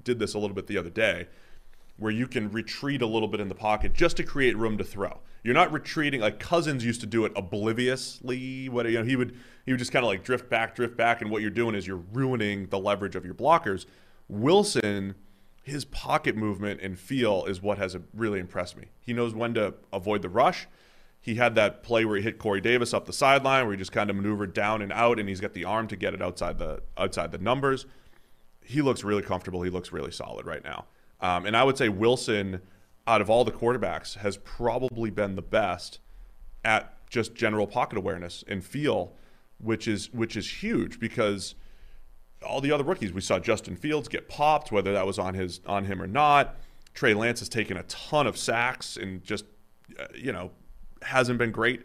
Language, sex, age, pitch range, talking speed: English, male, 30-49, 100-125 Hz, 220 wpm